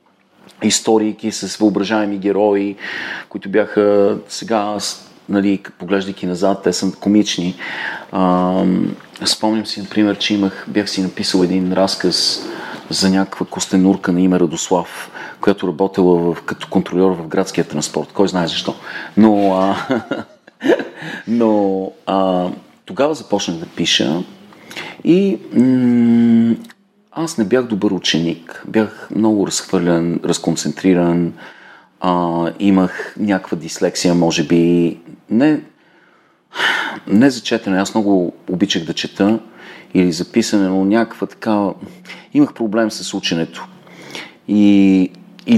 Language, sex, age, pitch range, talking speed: Bulgarian, male, 40-59, 90-105 Hz, 110 wpm